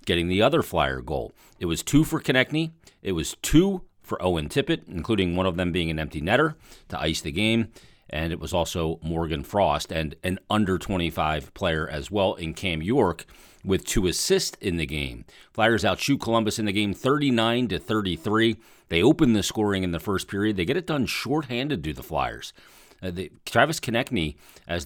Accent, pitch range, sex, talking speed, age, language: American, 85-110 Hz, male, 195 wpm, 40-59, English